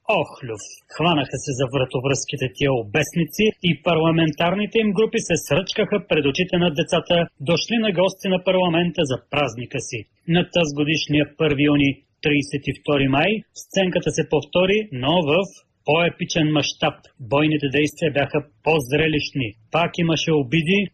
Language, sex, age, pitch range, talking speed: Bulgarian, male, 30-49, 145-180 Hz, 130 wpm